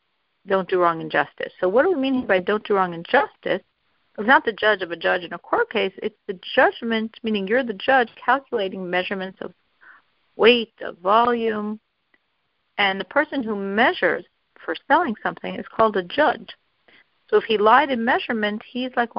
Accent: American